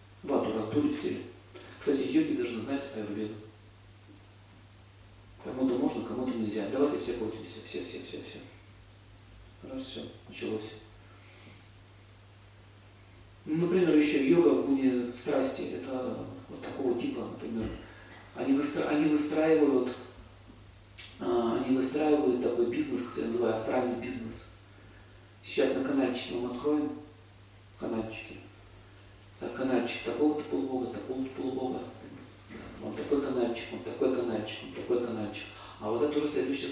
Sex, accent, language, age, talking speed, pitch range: male, native, Russian, 40-59, 115 wpm, 100-130 Hz